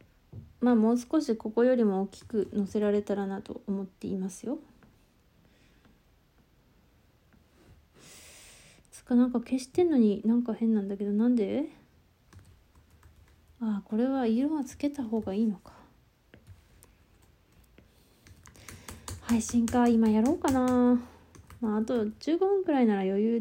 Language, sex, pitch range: Japanese, female, 200-260 Hz